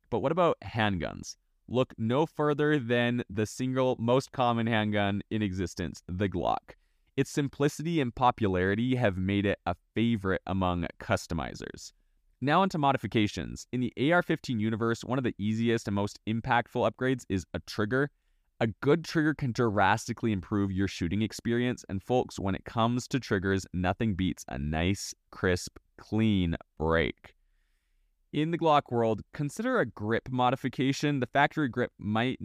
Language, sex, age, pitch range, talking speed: English, male, 20-39, 95-125 Hz, 150 wpm